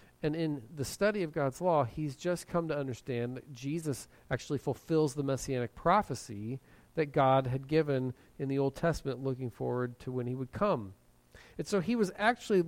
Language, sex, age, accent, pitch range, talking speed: English, male, 40-59, American, 130-180 Hz, 185 wpm